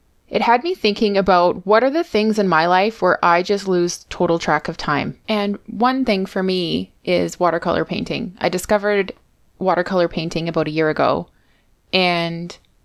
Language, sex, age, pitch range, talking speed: English, female, 20-39, 170-205 Hz, 175 wpm